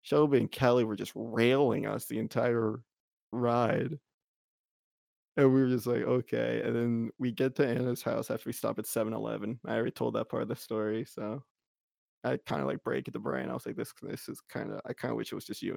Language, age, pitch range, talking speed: English, 20-39, 115-130 Hz, 230 wpm